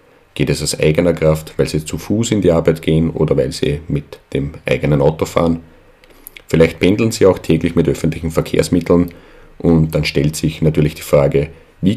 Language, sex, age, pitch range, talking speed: German, male, 40-59, 75-85 Hz, 185 wpm